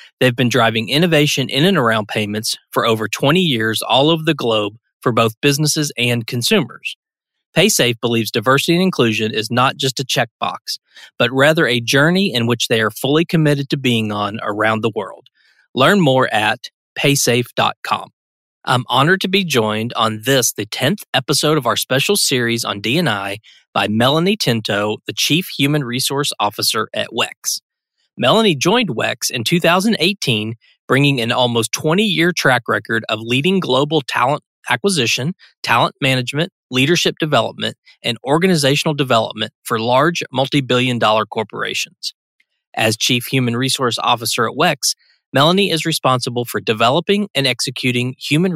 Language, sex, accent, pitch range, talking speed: English, male, American, 115-155 Hz, 145 wpm